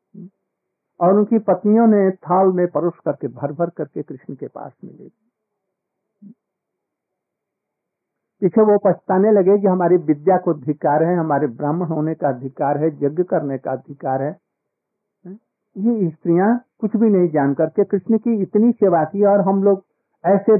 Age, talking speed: 60-79, 150 wpm